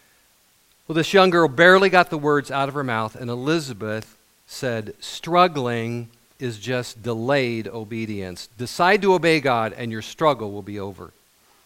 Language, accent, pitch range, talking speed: English, American, 115-160 Hz, 155 wpm